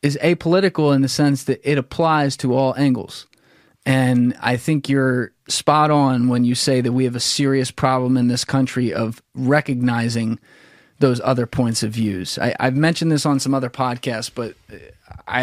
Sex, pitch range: male, 120-140 Hz